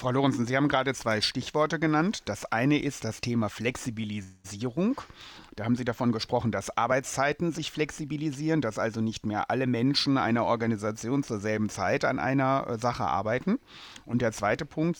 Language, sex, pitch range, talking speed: German, male, 115-150 Hz, 170 wpm